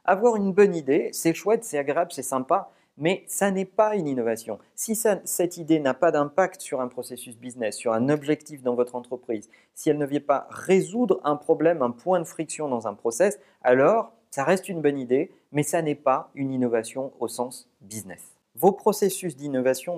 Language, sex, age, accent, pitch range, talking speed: French, male, 40-59, French, 120-170 Hz, 200 wpm